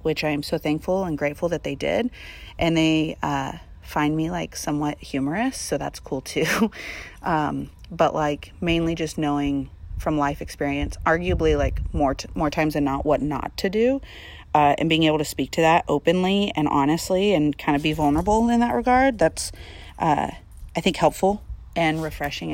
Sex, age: female, 30-49